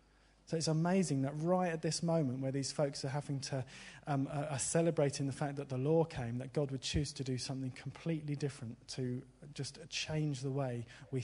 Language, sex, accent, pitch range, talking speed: English, male, British, 130-160 Hz, 205 wpm